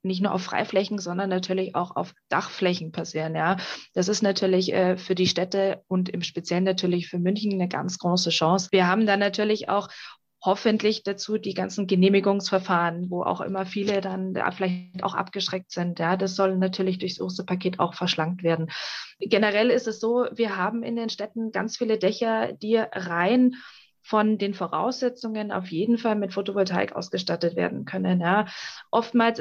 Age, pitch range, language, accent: 20-39, 190-225 Hz, German, German